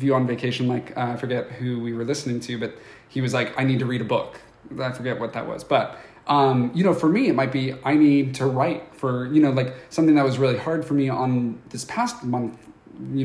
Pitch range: 125-145 Hz